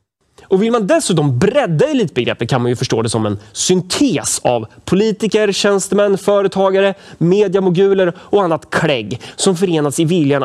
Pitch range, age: 135-195 Hz, 30-49